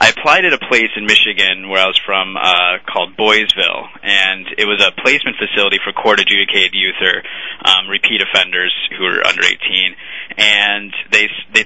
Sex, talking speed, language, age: male, 175 wpm, English, 20-39